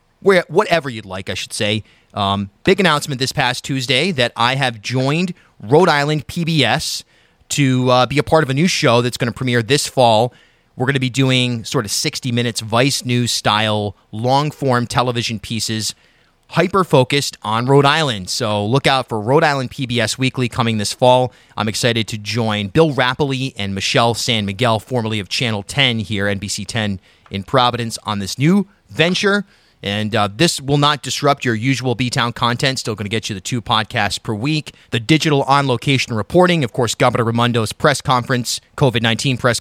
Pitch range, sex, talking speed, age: 110-140 Hz, male, 185 wpm, 30-49